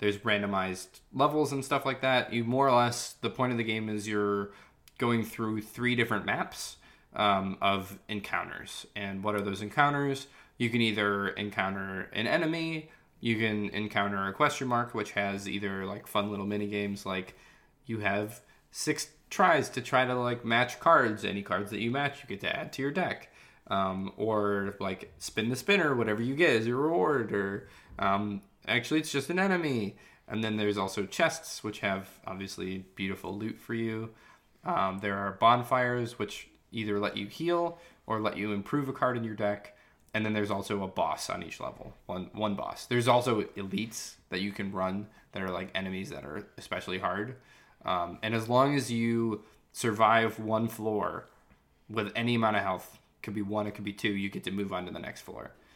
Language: English